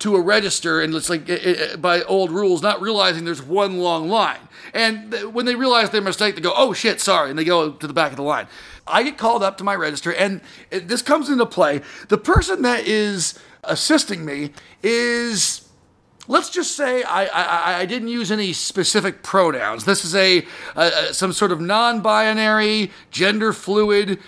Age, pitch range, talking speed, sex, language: 40-59, 180-230 Hz, 185 wpm, male, English